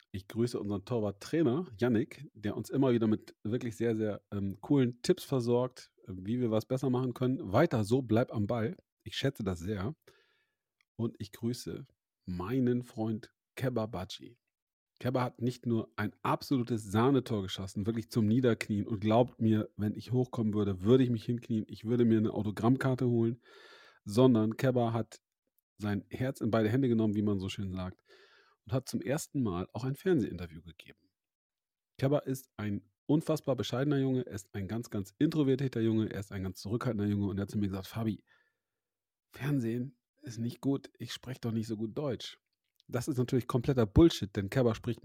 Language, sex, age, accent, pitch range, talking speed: German, male, 40-59, German, 105-130 Hz, 180 wpm